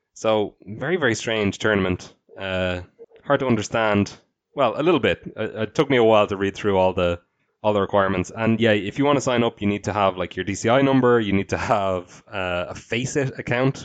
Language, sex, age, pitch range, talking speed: English, male, 20-39, 100-120 Hz, 225 wpm